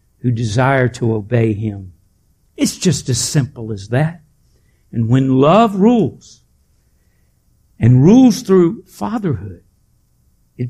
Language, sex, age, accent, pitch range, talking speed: English, male, 60-79, American, 110-155 Hz, 105 wpm